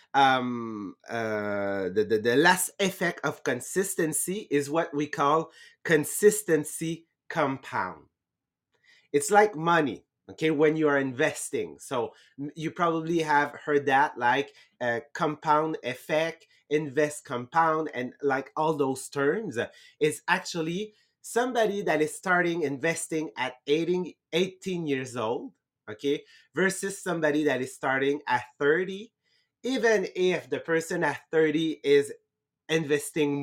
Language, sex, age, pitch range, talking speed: English, male, 30-49, 145-180 Hz, 120 wpm